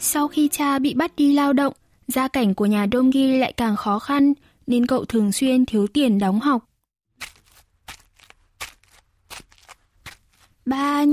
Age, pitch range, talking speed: 10-29, 215-285 Hz, 145 wpm